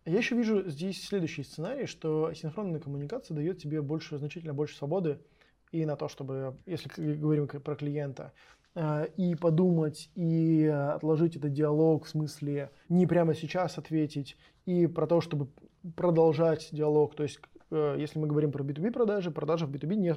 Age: 20-39